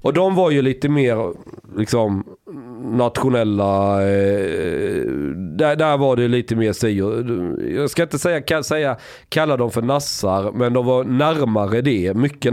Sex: male